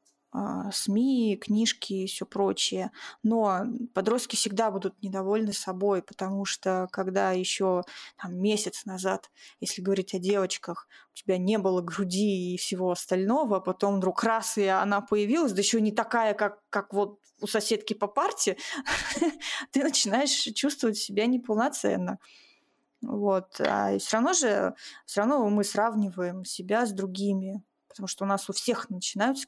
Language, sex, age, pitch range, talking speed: Russian, female, 20-39, 190-230 Hz, 135 wpm